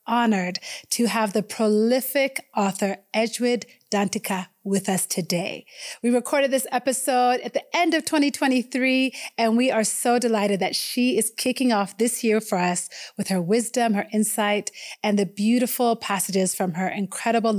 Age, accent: 30-49, American